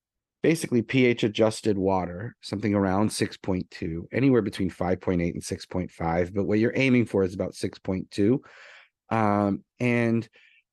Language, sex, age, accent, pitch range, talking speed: English, male, 30-49, American, 95-115 Hz, 125 wpm